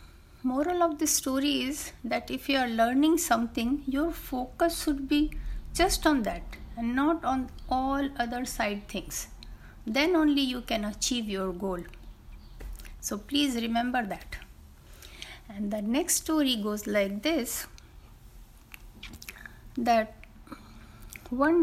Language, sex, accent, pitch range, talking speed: Hindi, female, native, 210-285 Hz, 125 wpm